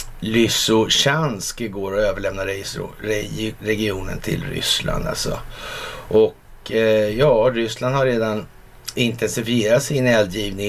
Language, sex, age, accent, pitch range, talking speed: Swedish, male, 50-69, native, 105-125 Hz, 95 wpm